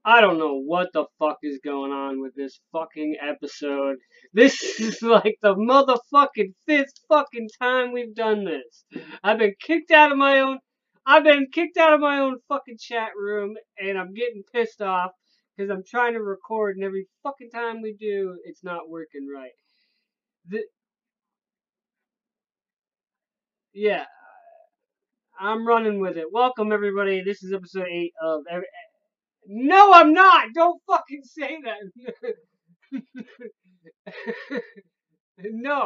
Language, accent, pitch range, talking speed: English, American, 200-280 Hz, 140 wpm